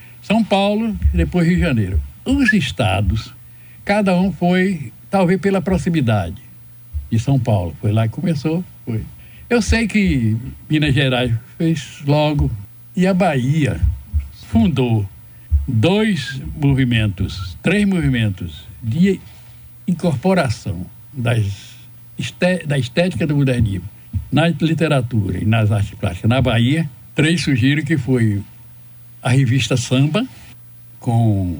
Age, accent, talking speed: 60-79, Brazilian, 110 wpm